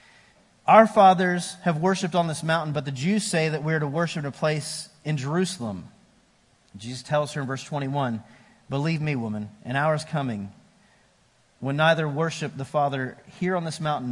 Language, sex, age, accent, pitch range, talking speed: English, male, 40-59, American, 130-185 Hz, 185 wpm